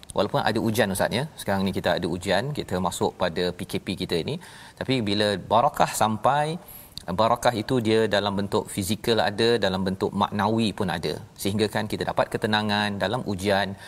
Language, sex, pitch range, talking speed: Malayalam, male, 95-120 Hz, 165 wpm